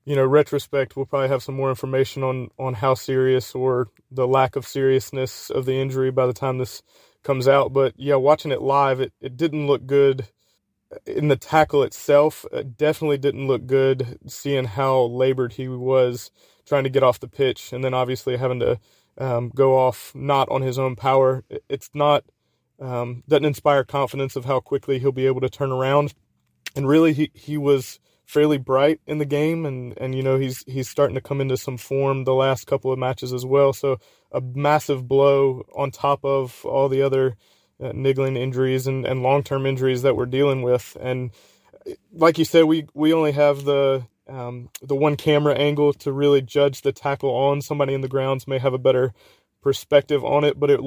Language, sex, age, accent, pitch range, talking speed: English, male, 20-39, American, 130-140 Hz, 200 wpm